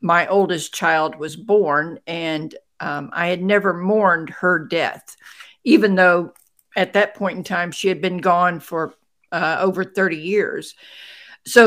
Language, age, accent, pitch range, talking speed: English, 50-69, American, 180-220 Hz, 155 wpm